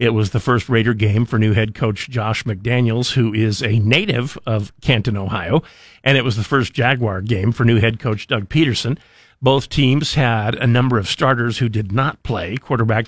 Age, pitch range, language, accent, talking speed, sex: 50-69, 110-130 Hz, English, American, 200 wpm, male